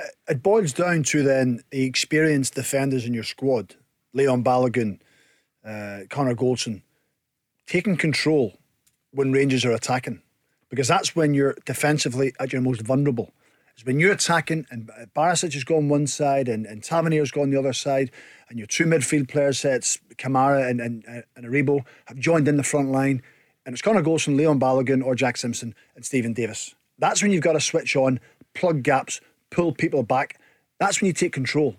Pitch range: 130-160 Hz